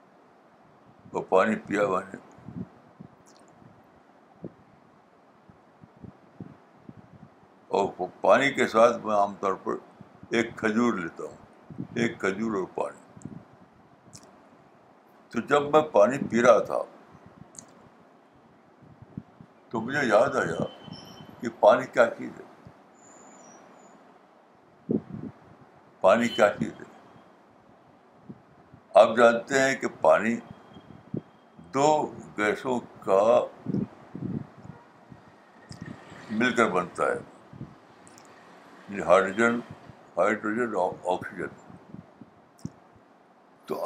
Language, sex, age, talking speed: Urdu, male, 60-79, 70 wpm